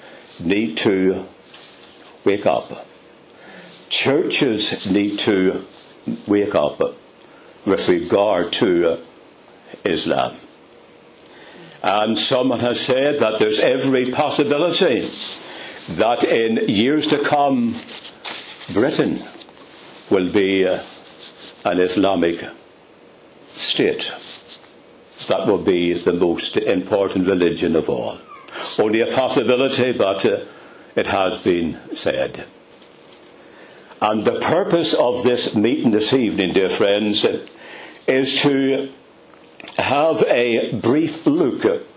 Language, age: English, 60-79